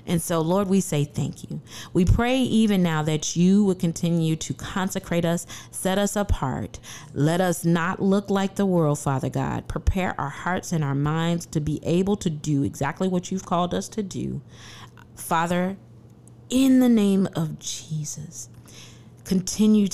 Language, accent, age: English, American, 40-59